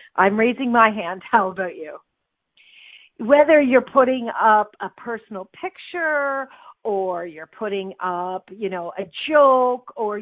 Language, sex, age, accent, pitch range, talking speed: English, female, 50-69, American, 195-270 Hz, 135 wpm